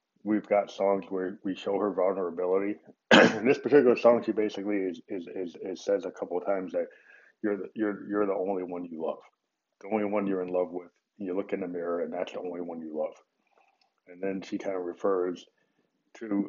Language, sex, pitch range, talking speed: English, male, 90-115 Hz, 215 wpm